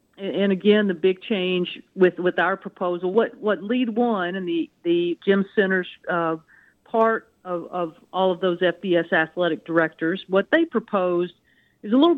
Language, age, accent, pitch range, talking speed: English, 50-69, American, 170-200 Hz, 170 wpm